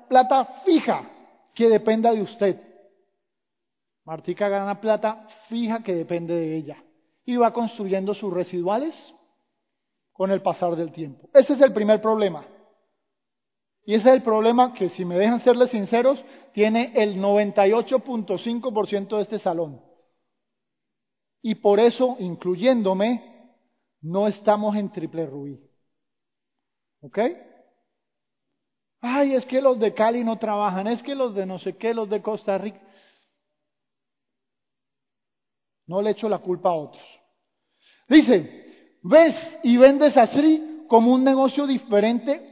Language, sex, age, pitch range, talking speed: Spanish, male, 40-59, 185-245 Hz, 130 wpm